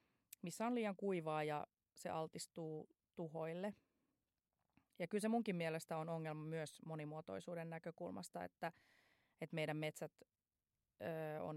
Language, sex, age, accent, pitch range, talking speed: Finnish, female, 30-49, native, 160-205 Hz, 115 wpm